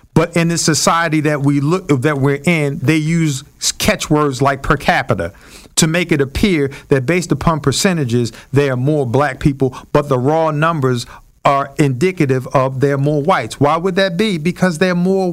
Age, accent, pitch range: 50-69, American, 130-170 Hz